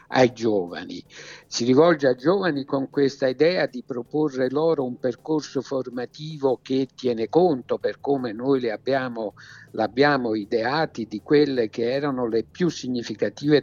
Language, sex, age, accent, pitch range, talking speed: Italian, male, 50-69, native, 110-140 Hz, 140 wpm